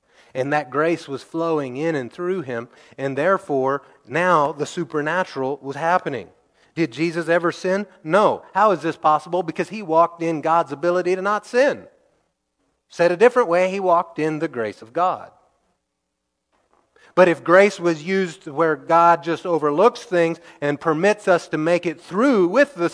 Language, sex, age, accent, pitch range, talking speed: English, male, 30-49, American, 140-185 Hz, 165 wpm